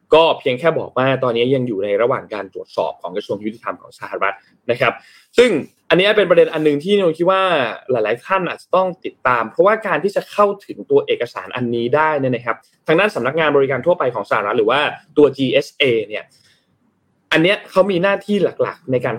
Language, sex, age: Thai, male, 20-39